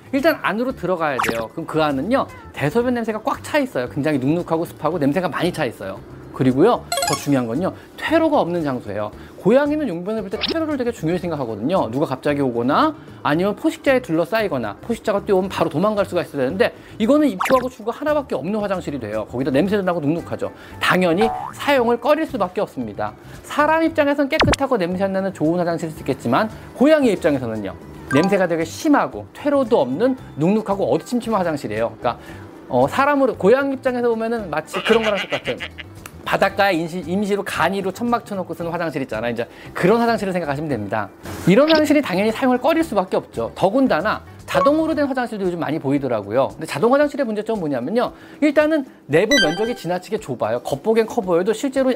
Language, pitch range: Korean, 160-260 Hz